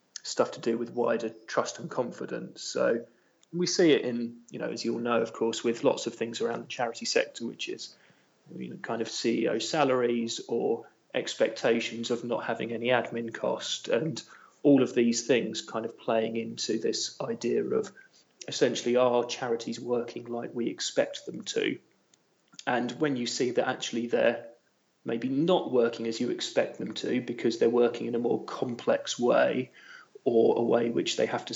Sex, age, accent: male, 30-49, British